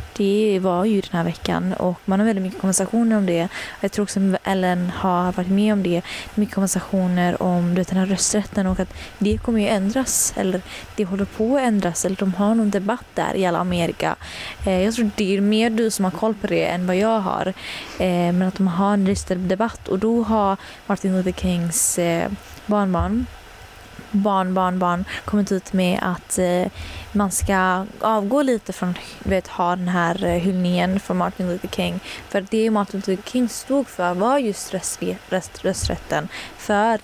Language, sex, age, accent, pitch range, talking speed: Swedish, female, 20-39, native, 180-210 Hz, 195 wpm